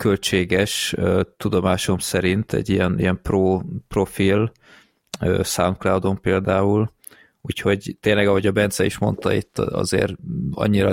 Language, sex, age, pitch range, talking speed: English, male, 30-49, 90-110 Hz, 120 wpm